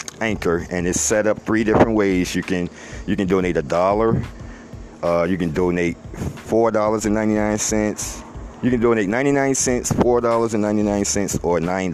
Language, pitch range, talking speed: English, 90-115 Hz, 180 wpm